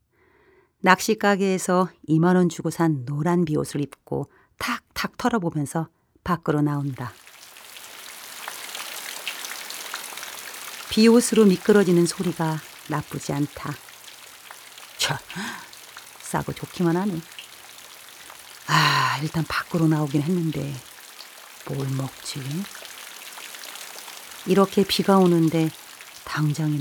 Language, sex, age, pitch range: Korean, female, 40-59, 145-190 Hz